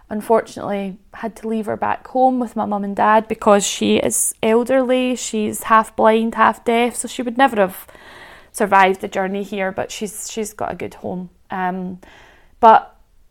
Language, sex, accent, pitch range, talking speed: English, female, British, 185-230 Hz, 175 wpm